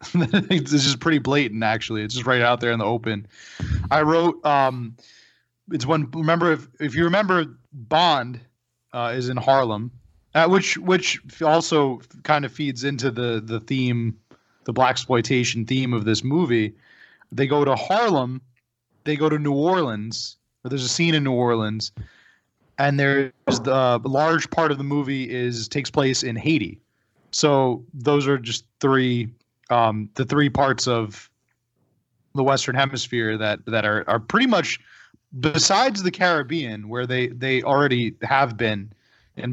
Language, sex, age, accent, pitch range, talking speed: English, male, 20-39, American, 115-145 Hz, 160 wpm